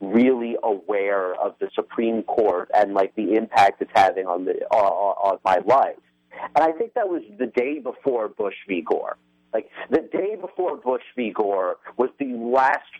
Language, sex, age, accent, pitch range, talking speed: English, male, 40-59, American, 105-165 Hz, 180 wpm